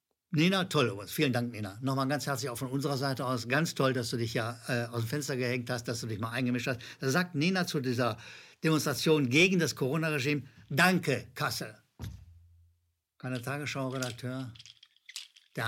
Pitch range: 120-175 Hz